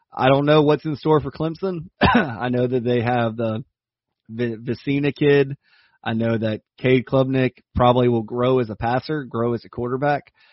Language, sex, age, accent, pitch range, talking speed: English, male, 30-49, American, 115-135 Hz, 180 wpm